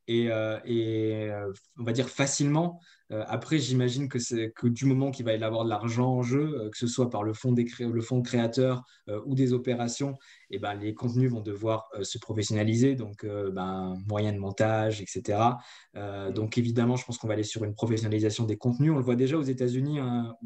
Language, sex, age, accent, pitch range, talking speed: French, male, 20-39, French, 110-130 Hz, 220 wpm